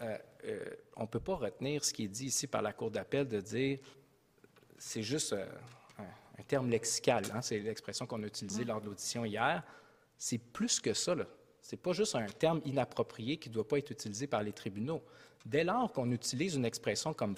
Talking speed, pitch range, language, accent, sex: 215 wpm, 115-150 Hz, English, Canadian, male